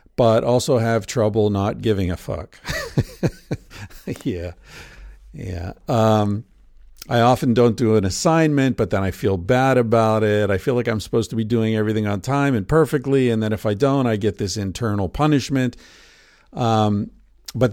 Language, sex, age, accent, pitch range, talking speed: English, male, 50-69, American, 100-125 Hz, 165 wpm